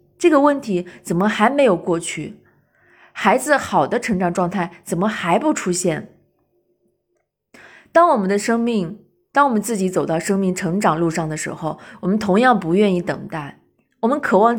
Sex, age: female, 20-39